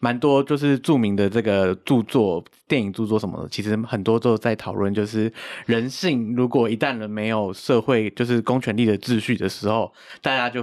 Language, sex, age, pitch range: Chinese, male, 20-39, 105-130 Hz